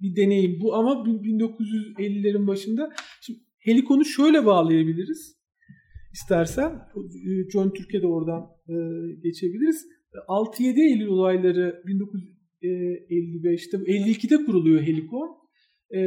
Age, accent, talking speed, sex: 50-69, native, 90 wpm, male